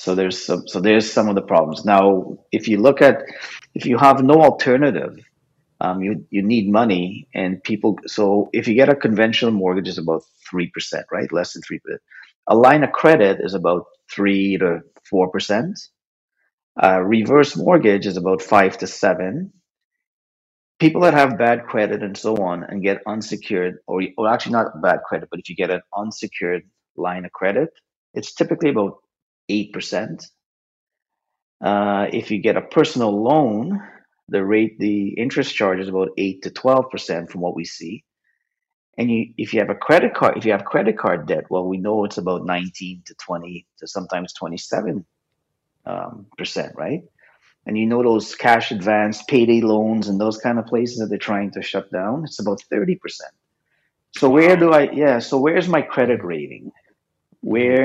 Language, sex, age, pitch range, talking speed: English, male, 30-49, 95-115 Hz, 180 wpm